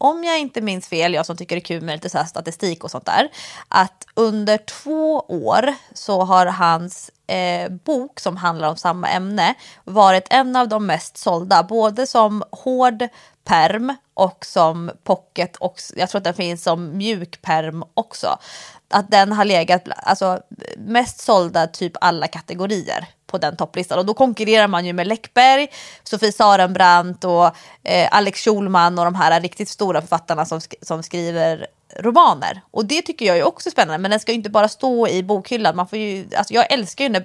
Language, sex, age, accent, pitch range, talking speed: English, female, 20-39, Swedish, 180-245 Hz, 180 wpm